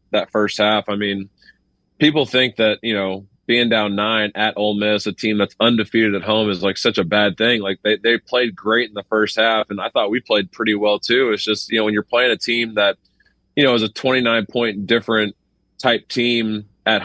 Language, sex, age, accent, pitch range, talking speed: English, male, 30-49, American, 105-120 Hz, 230 wpm